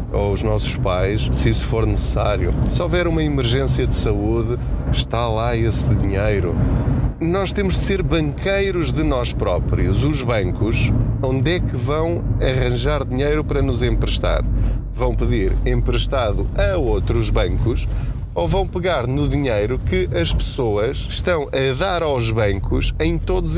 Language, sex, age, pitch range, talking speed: Portuguese, male, 20-39, 100-140 Hz, 150 wpm